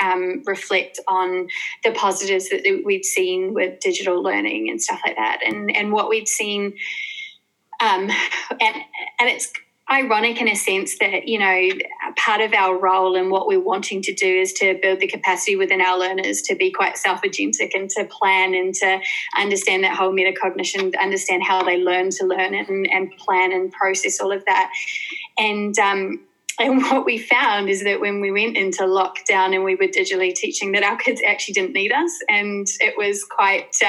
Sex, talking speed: female, 190 wpm